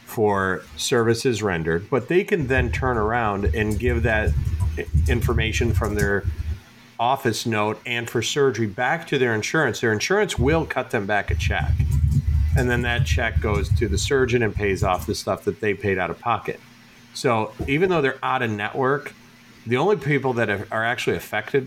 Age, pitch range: 40-59, 100-120 Hz